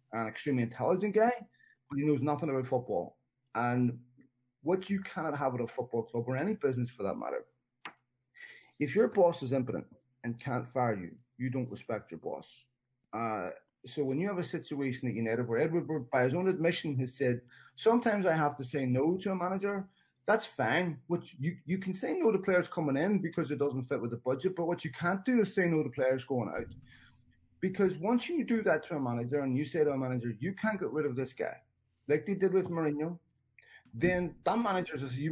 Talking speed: 215 wpm